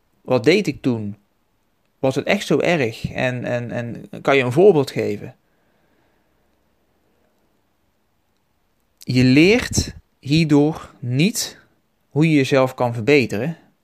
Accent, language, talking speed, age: Dutch, Dutch, 115 wpm, 30-49